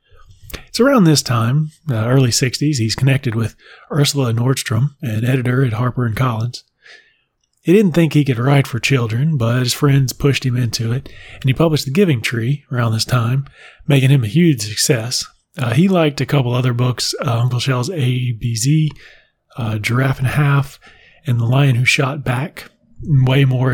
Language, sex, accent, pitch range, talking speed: English, male, American, 115-140 Hz, 180 wpm